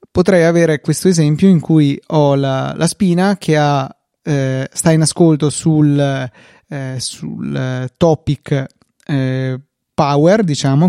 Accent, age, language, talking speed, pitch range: native, 30-49, Italian, 125 wpm, 140-165 Hz